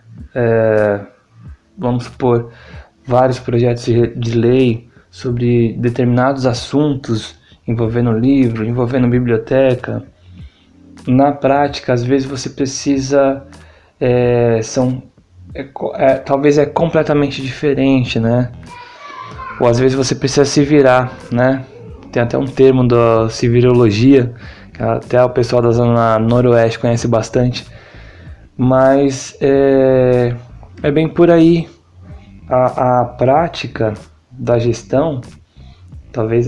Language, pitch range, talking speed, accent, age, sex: Portuguese, 115-135 Hz, 100 wpm, Brazilian, 20-39, male